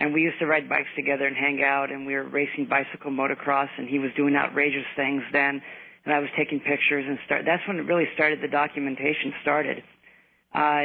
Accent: American